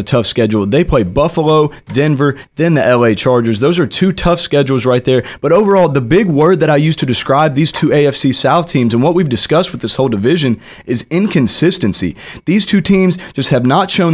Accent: American